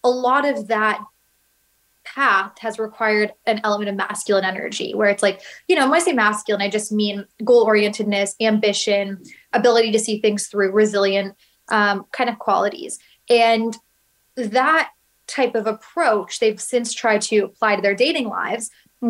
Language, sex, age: English, female, 20-39